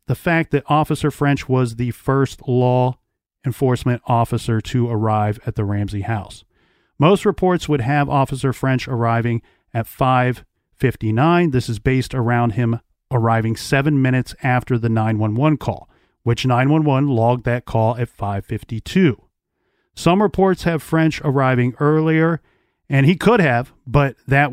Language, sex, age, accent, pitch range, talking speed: English, male, 40-59, American, 120-155 Hz, 140 wpm